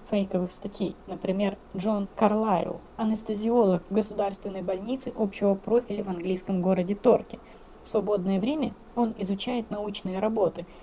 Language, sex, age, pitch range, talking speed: Russian, female, 20-39, 180-220 Hz, 120 wpm